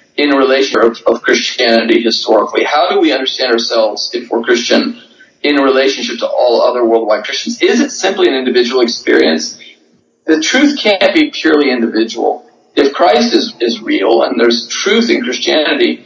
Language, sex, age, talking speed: English, male, 40-59, 155 wpm